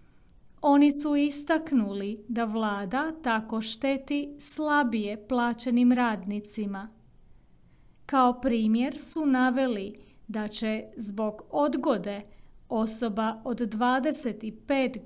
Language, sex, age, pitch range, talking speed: Croatian, female, 40-59, 220-275 Hz, 85 wpm